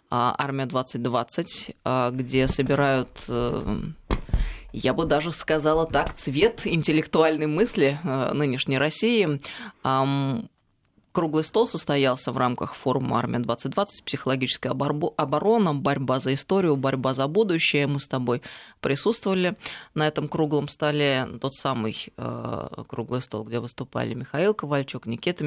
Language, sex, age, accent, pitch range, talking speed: Russian, female, 20-39, native, 135-160 Hz, 110 wpm